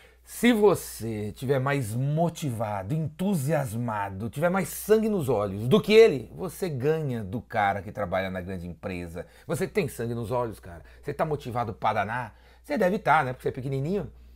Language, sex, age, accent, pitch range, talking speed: Portuguese, male, 30-49, Brazilian, 110-165 Hz, 175 wpm